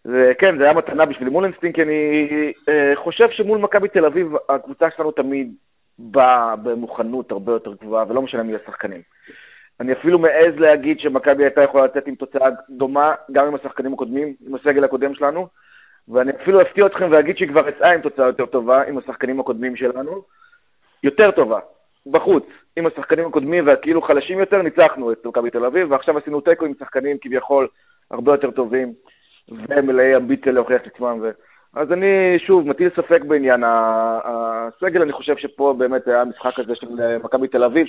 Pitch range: 125-155 Hz